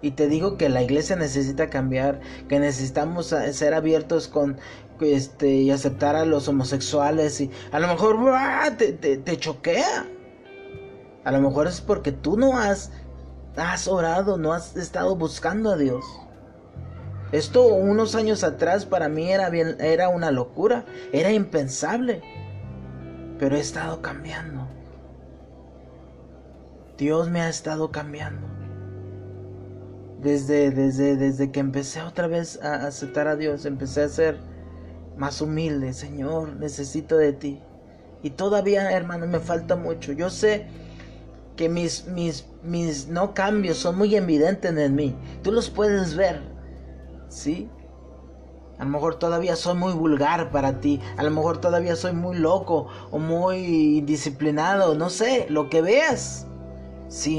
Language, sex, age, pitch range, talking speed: Spanish, male, 30-49, 125-170 Hz, 135 wpm